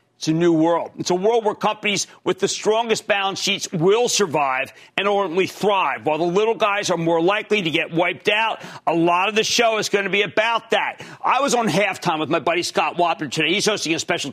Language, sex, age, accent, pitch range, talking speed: English, male, 40-59, American, 165-230 Hz, 230 wpm